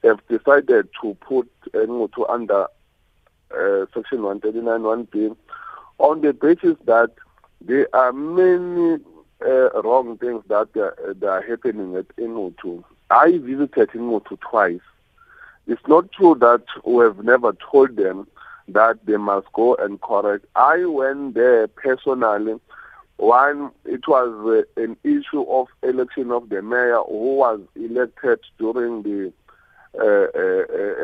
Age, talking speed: 50-69, 130 wpm